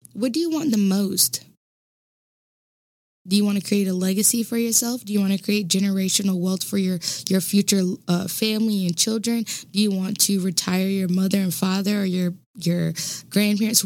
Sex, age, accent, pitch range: female, 10-29, American, 190-225 Hz